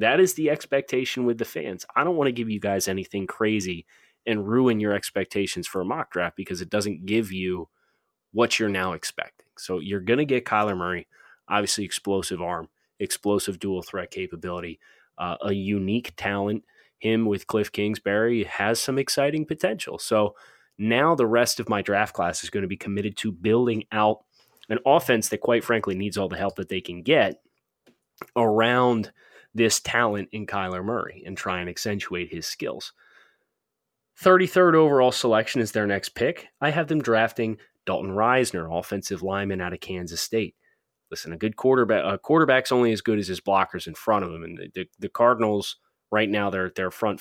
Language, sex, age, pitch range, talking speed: English, male, 30-49, 100-120 Hz, 185 wpm